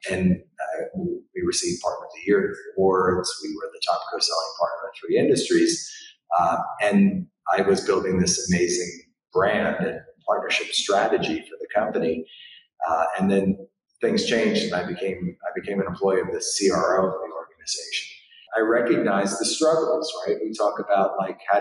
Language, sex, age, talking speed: English, male, 30-49, 170 wpm